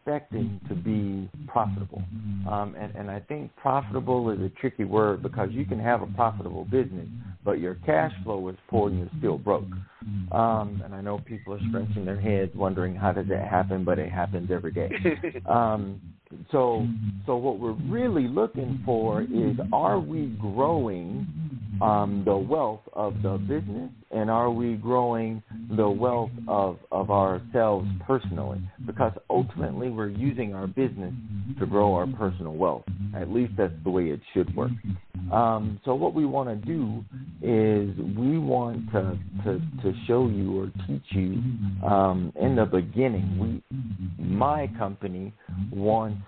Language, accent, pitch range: English, American, 95-115 Hz